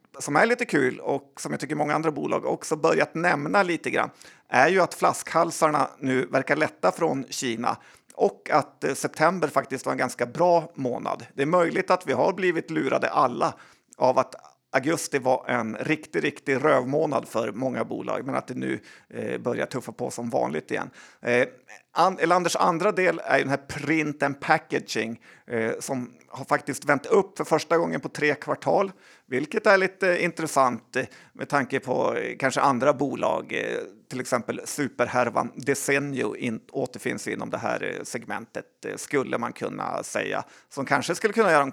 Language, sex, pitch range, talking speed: Swedish, male, 135-175 Hz, 170 wpm